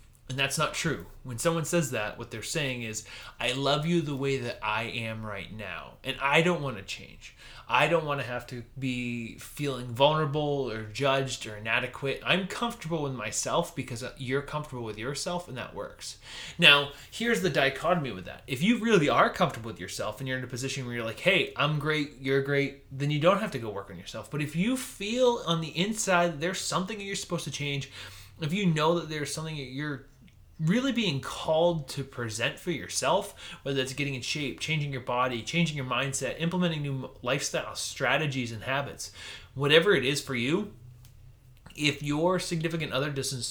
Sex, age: male, 20-39